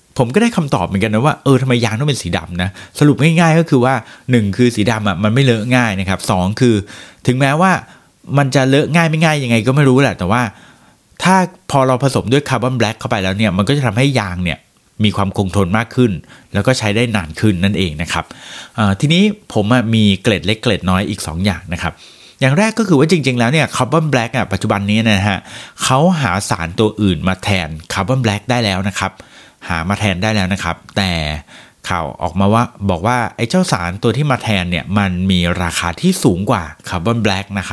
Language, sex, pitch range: Thai, male, 95-130 Hz